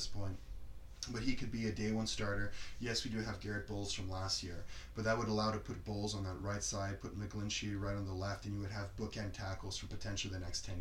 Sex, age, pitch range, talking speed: male, 20-39, 100-110 Hz, 255 wpm